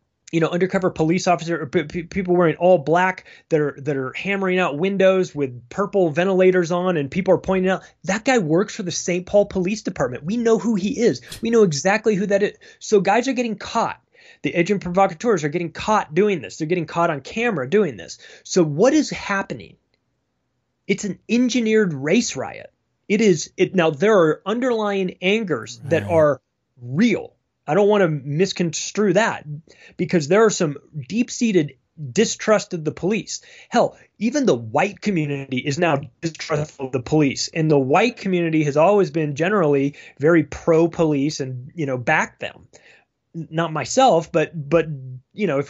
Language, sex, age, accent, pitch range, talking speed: English, male, 20-39, American, 155-205 Hz, 175 wpm